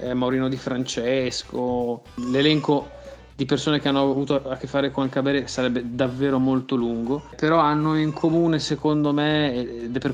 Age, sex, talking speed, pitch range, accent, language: 30-49, male, 160 wpm, 125-145 Hz, native, Italian